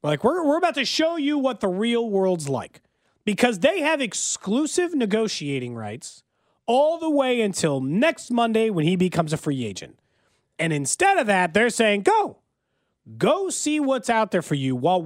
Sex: male